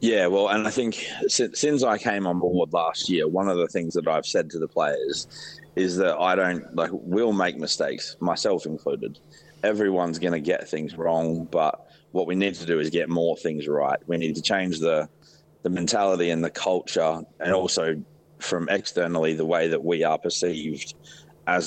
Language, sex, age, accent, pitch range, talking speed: English, male, 30-49, Australian, 80-95 Hz, 195 wpm